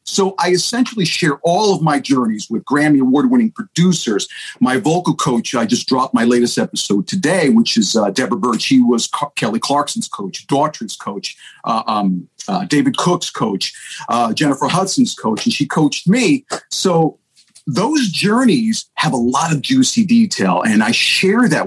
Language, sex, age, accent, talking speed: English, male, 50-69, American, 170 wpm